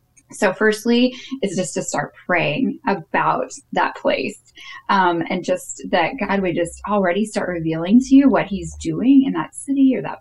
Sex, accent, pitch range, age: female, American, 170-235 Hz, 10-29